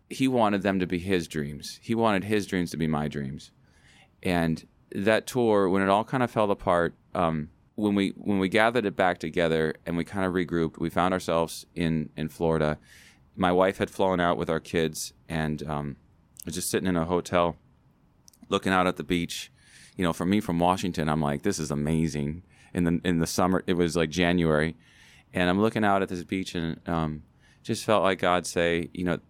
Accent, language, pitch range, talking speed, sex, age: American, English, 80-95 Hz, 210 wpm, male, 30-49